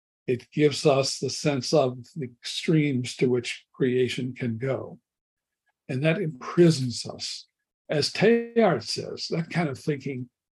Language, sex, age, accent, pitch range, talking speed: English, male, 60-79, American, 125-155 Hz, 135 wpm